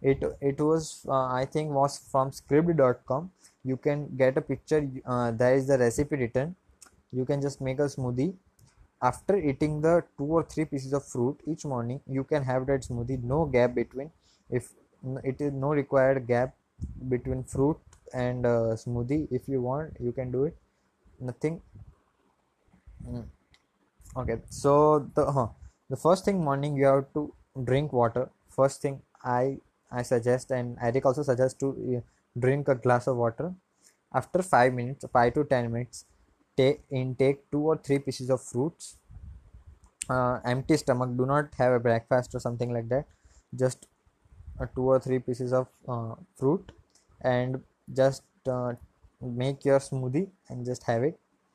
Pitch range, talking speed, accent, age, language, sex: 125-140 Hz, 160 wpm, Indian, 20-39, English, male